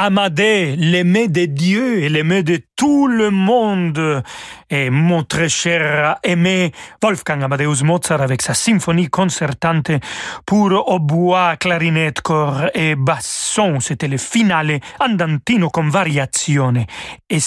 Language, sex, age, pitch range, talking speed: French, male, 40-59, 150-195 Hz, 125 wpm